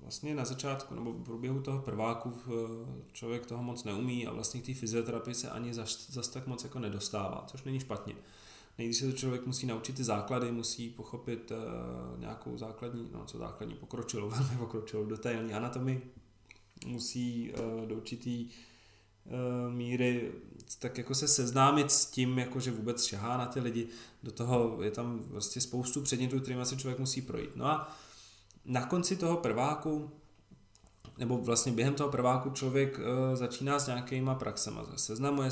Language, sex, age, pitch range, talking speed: Czech, male, 20-39, 115-130 Hz, 160 wpm